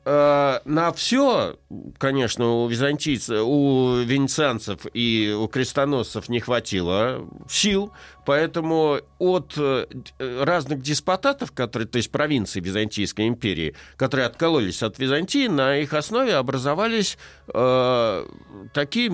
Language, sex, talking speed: Russian, male, 100 wpm